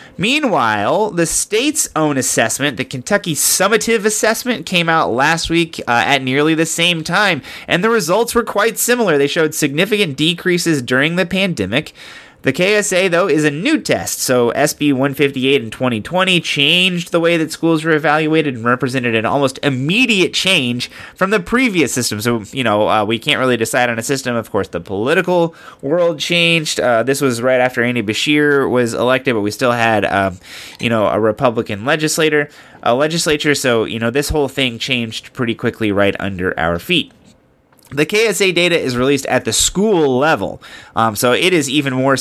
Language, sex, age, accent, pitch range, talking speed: English, male, 30-49, American, 115-165 Hz, 180 wpm